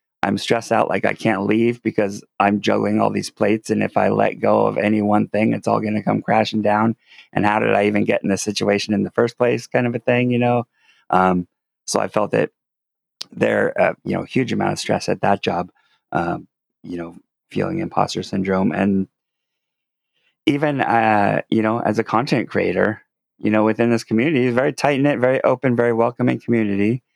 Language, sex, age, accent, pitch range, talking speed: English, male, 30-49, American, 100-120 Hz, 205 wpm